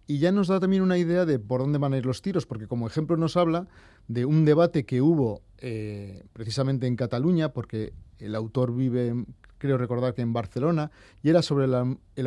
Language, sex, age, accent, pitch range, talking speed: Spanish, male, 30-49, Spanish, 115-150 Hz, 210 wpm